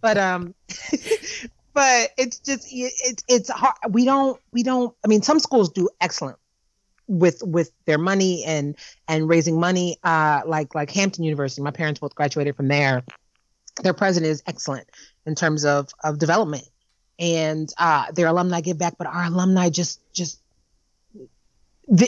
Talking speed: 160 wpm